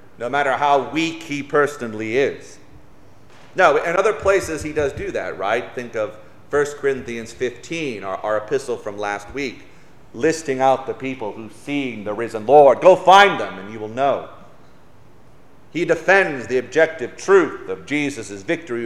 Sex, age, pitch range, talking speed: male, 40-59, 130-180 Hz, 160 wpm